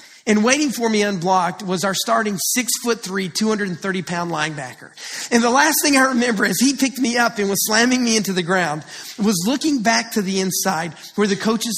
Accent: American